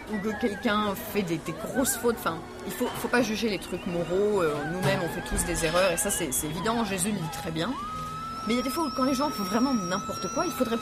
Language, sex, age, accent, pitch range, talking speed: French, female, 30-49, French, 175-230 Hz, 270 wpm